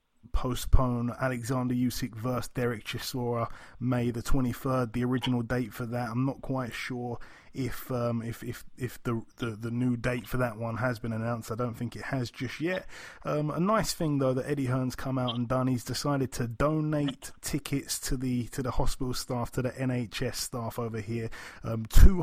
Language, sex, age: English, male, 20-39